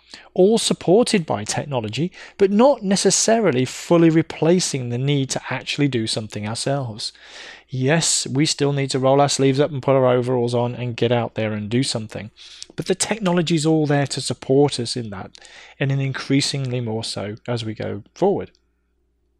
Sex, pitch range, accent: male, 120-155 Hz, British